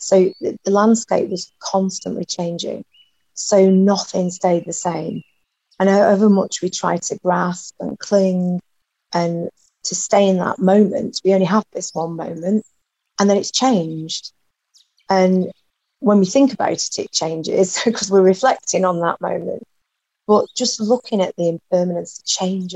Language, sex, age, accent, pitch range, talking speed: English, female, 30-49, British, 175-200 Hz, 155 wpm